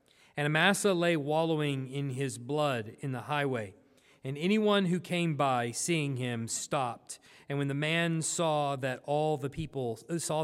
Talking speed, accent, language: 160 wpm, American, English